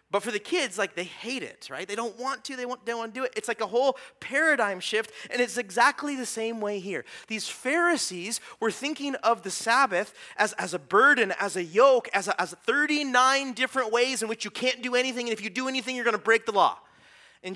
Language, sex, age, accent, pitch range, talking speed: English, male, 30-49, American, 190-250 Hz, 245 wpm